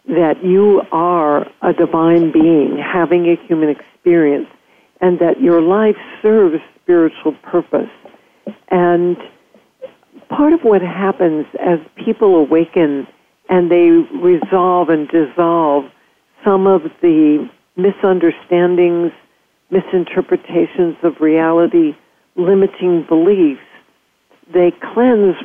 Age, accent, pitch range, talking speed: 60-79, American, 165-200 Hz, 95 wpm